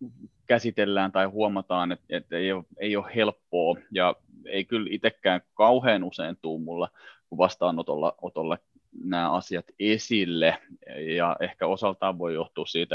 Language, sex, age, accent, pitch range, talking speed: Finnish, male, 30-49, native, 95-120 Hz, 130 wpm